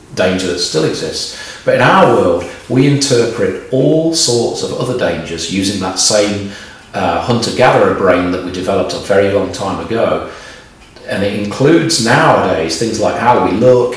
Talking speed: 165 wpm